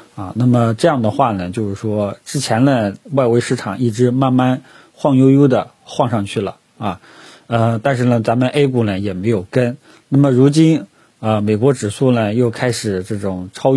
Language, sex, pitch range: Chinese, male, 105-130 Hz